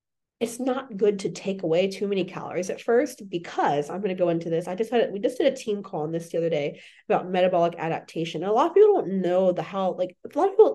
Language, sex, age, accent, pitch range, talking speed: English, female, 20-39, American, 180-260 Hz, 270 wpm